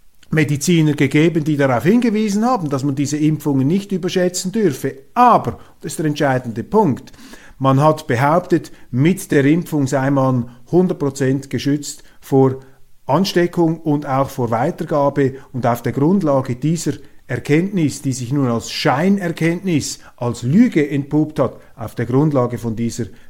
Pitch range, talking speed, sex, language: 130-160 Hz, 140 wpm, male, German